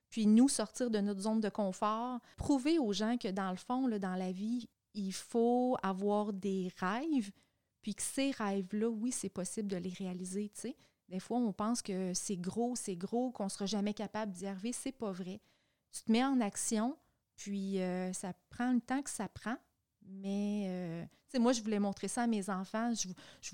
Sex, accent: female, Canadian